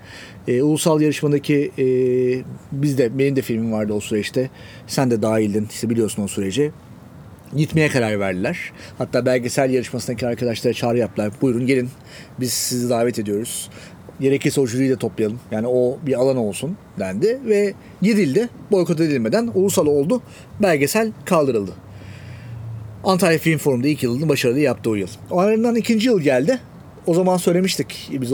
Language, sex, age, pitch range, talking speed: Turkish, male, 40-59, 115-170 Hz, 145 wpm